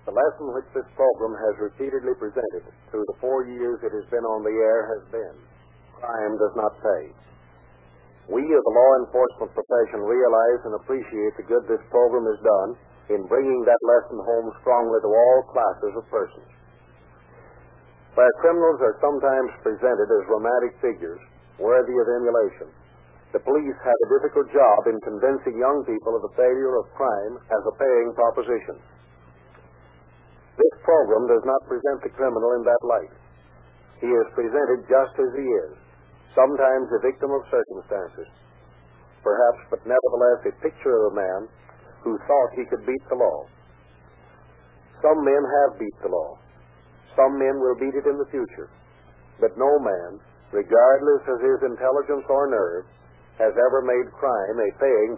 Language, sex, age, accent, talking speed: English, male, 50-69, American, 160 wpm